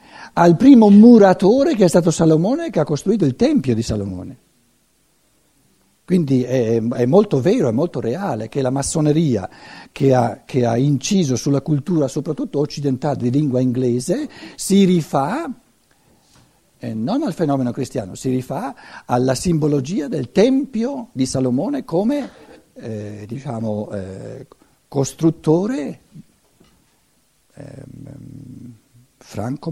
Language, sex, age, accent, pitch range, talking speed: Italian, male, 60-79, native, 120-160 Hz, 115 wpm